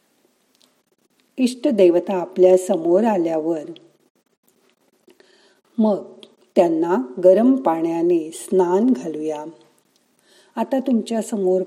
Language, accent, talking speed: Marathi, native, 50 wpm